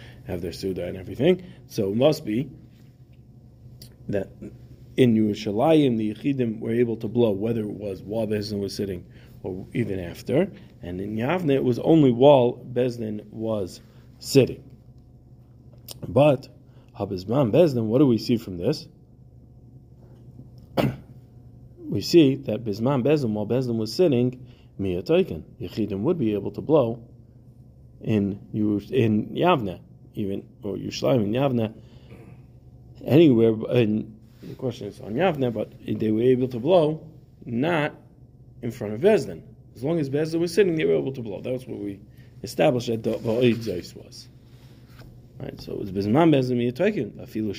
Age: 40-59